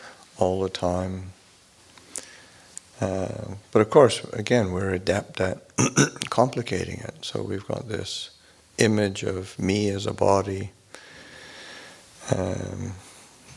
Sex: male